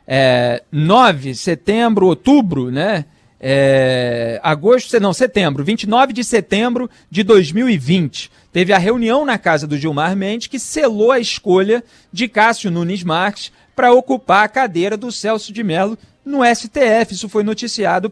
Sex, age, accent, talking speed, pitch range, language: male, 40-59, Brazilian, 145 wpm, 155-225 Hz, Portuguese